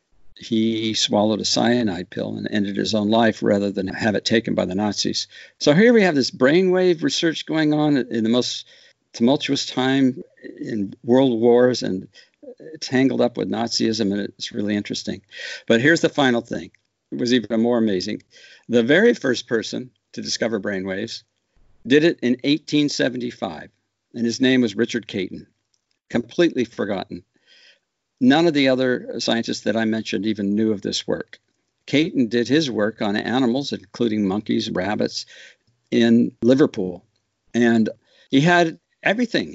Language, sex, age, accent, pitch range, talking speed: English, male, 60-79, American, 110-140 Hz, 155 wpm